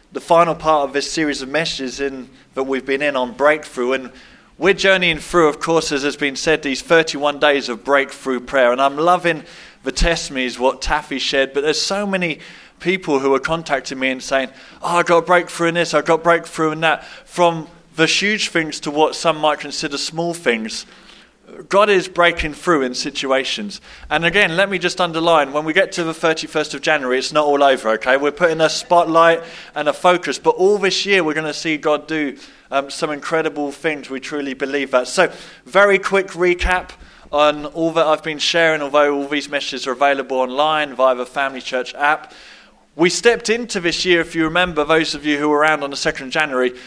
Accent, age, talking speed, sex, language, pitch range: British, 20-39, 210 wpm, male, English, 140-170 Hz